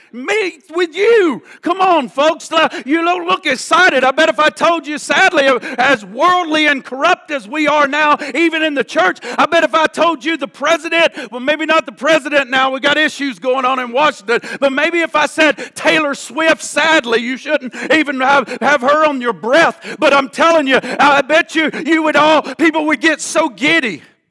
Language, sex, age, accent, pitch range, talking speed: English, male, 50-69, American, 270-320 Hz, 200 wpm